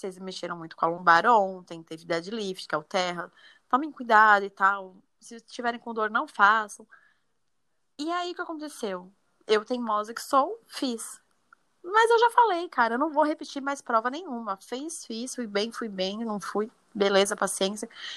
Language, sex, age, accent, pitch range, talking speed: Portuguese, female, 20-39, Brazilian, 185-275 Hz, 180 wpm